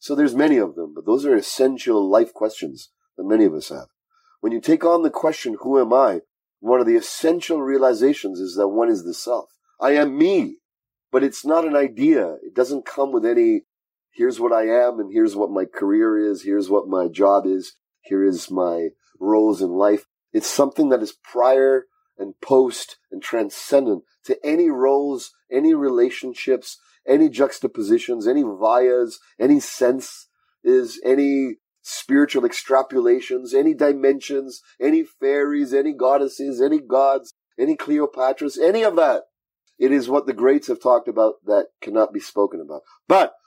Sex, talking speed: male, 165 wpm